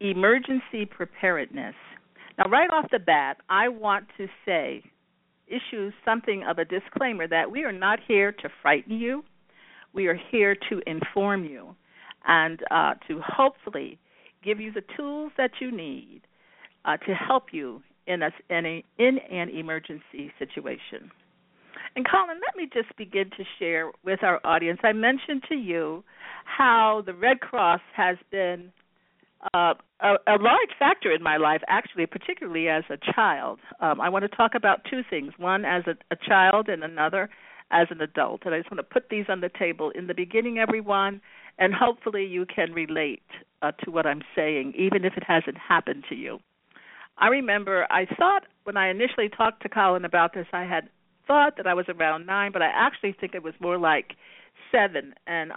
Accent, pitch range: American, 175-240 Hz